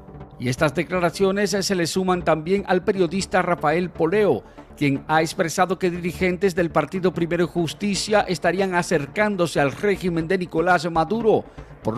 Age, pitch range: 50-69, 160-195 Hz